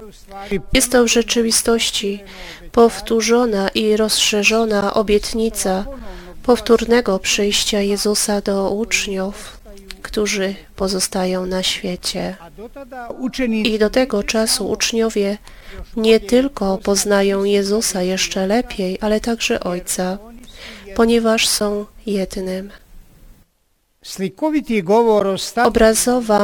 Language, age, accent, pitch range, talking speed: Polish, 30-49, native, 195-225 Hz, 80 wpm